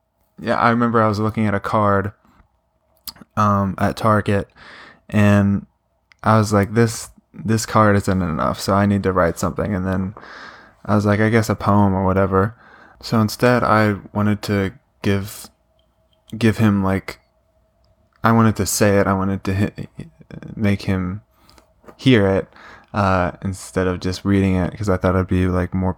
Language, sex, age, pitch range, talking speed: English, male, 20-39, 95-110 Hz, 170 wpm